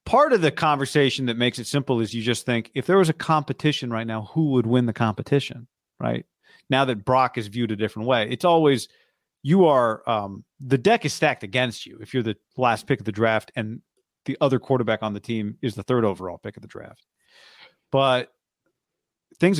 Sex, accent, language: male, American, English